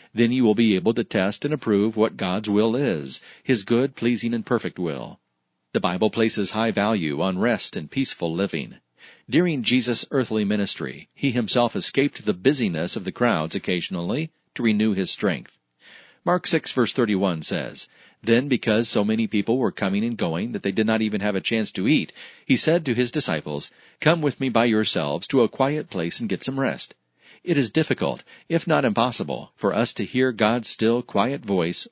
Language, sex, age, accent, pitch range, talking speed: English, male, 40-59, American, 100-130 Hz, 190 wpm